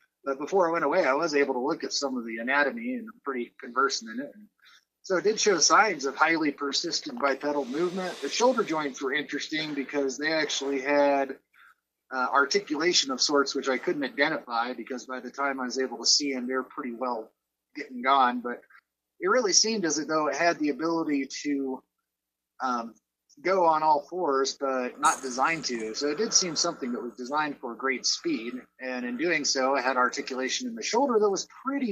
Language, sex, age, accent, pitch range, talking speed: English, male, 30-49, American, 135-175 Hz, 205 wpm